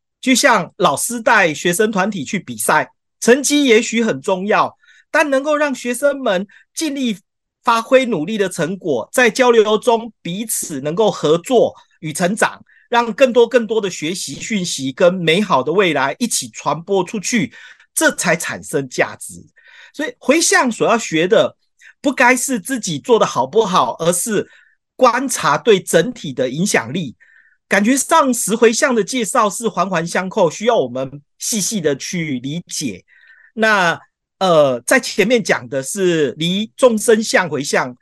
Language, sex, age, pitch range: Chinese, male, 40-59, 175-245 Hz